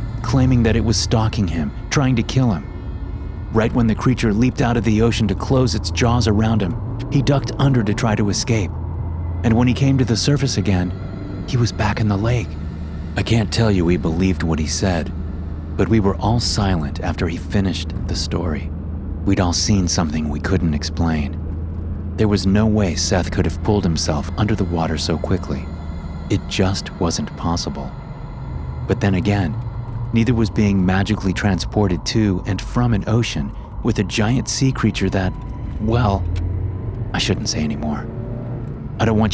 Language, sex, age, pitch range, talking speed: English, male, 30-49, 85-115 Hz, 180 wpm